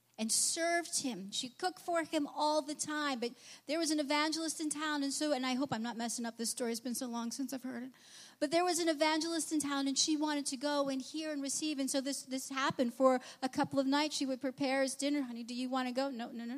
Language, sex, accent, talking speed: English, female, American, 275 wpm